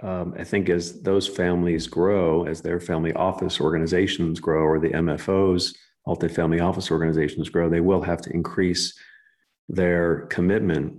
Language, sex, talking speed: English, male, 155 wpm